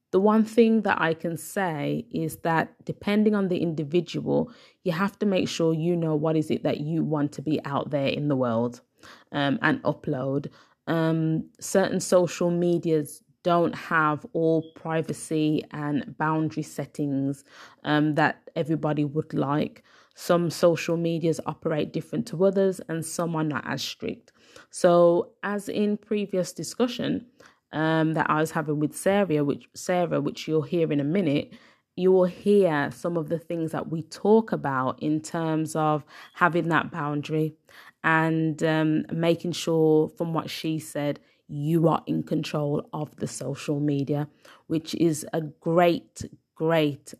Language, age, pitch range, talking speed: English, 20-39, 150-175 Hz, 155 wpm